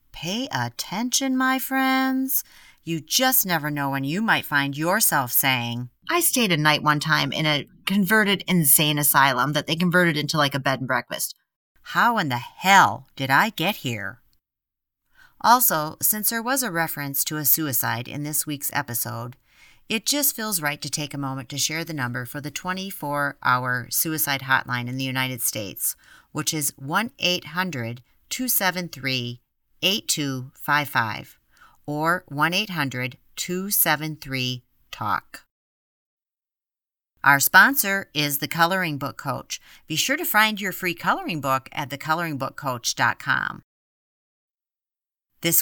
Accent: American